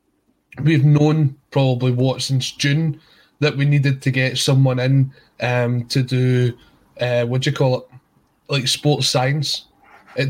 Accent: British